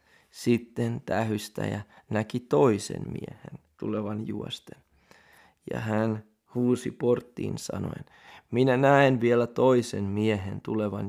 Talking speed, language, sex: 95 wpm, Finnish, male